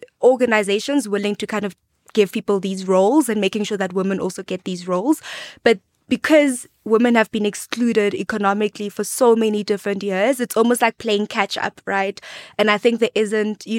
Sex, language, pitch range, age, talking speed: female, English, 195-230 Hz, 20-39, 185 wpm